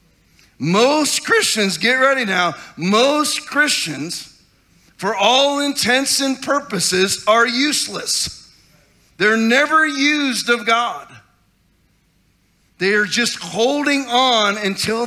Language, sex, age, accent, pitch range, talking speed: English, male, 40-59, American, 195-260 Hz, 100 wpm